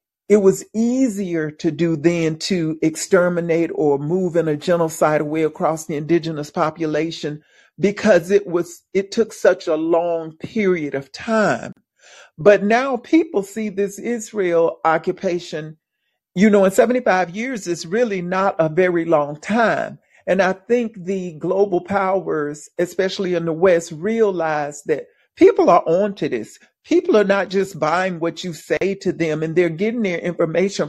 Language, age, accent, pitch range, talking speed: English, 50-69, American, 165-200 Hz, 155 wpm